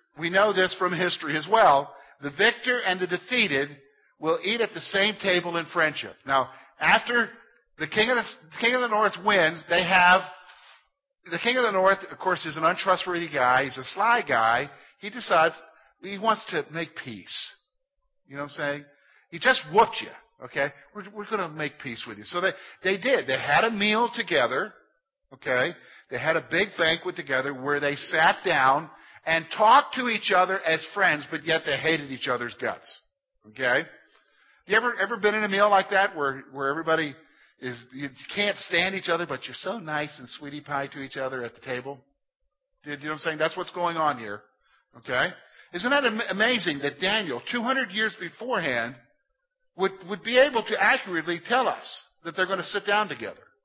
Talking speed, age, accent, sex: 195 wpm, 50-69, American, male